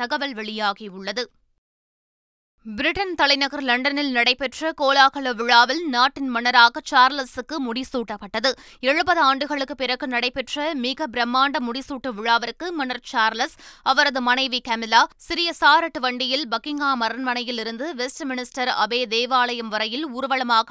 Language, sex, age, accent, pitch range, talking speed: Tamil, female, 20-39, native, 240-285 Hz, 100 wpm